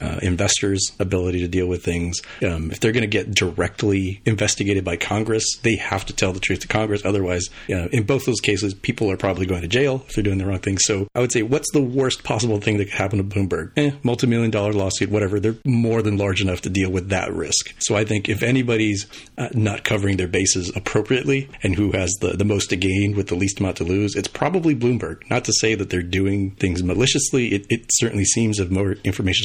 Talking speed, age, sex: 235 wpm, 40-59, male